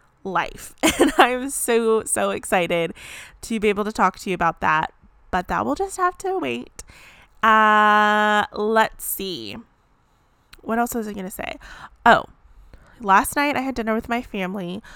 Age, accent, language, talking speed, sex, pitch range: 20-39, American, English, 165 wpm, female, 190-235 Hz